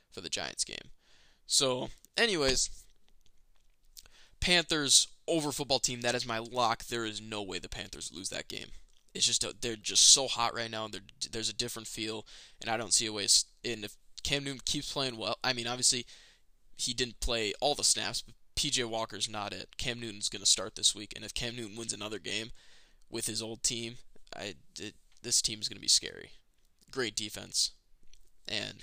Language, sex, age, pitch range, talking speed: English, male, 20-39, 110-145 Hz, 195 wpm